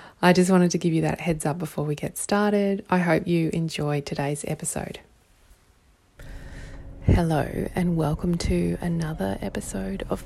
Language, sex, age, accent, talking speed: English, female, 20-39, Australian, 150 wpm